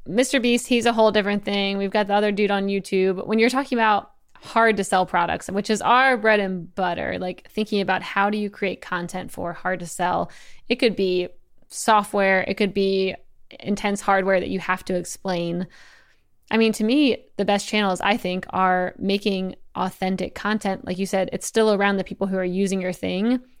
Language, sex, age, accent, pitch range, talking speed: English, female, 20-39, American, 185-220 Hz, 205 wpm